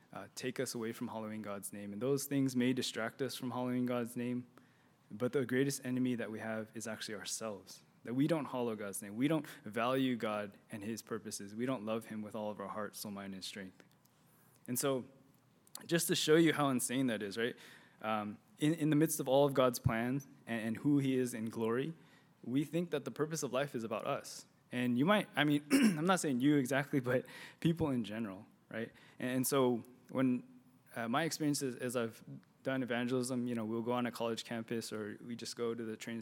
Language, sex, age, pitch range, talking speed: English, male, 20-39, 115-145 Hz, 220 wpm